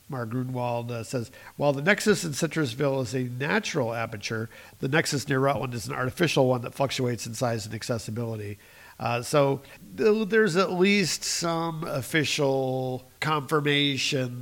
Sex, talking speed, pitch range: male, 140 wpm, 115-140 Hz